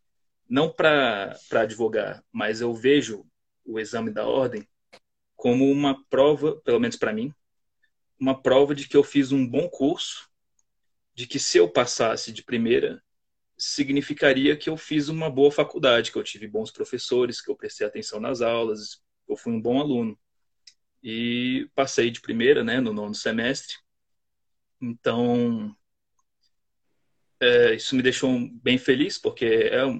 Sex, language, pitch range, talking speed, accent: male, Portuguese, 115-195 Hz, 150 wpm, Brazilian